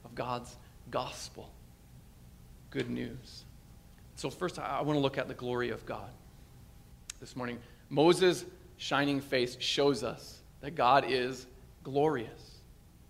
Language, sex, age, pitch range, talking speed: English, male, 40-59, 140-190 Hz, 120 wpm